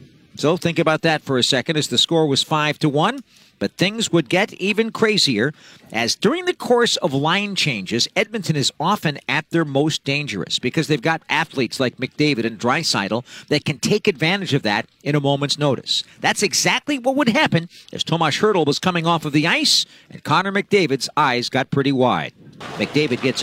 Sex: male